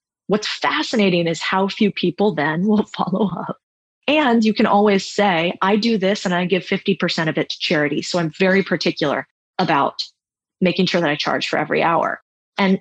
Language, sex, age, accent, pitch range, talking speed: English, female, 20-39, American, 165-210 Hz, 185 wpm